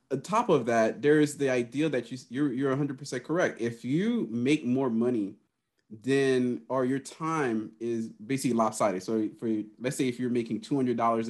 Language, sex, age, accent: English, male, 30-49, American